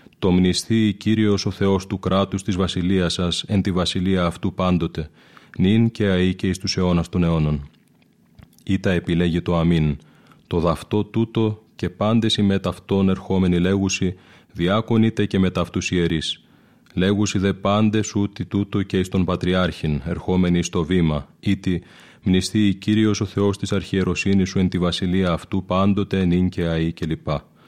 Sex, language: male, Greek